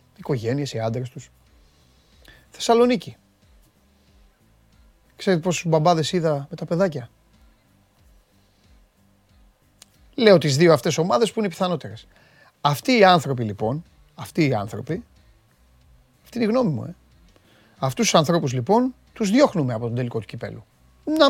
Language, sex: Greek, male